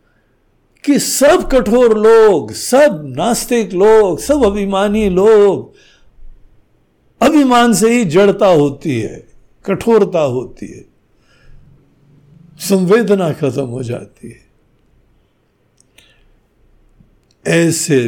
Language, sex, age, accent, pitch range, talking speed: Hindi, male, 60-79, native, 140-230 Hz, 85 wpm